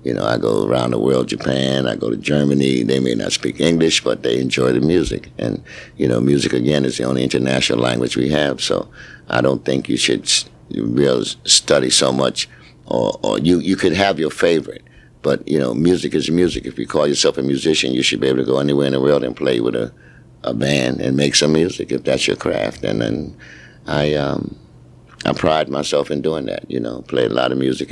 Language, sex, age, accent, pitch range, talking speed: English, male, 60-79, American, 65-75 Hz, 225 wpm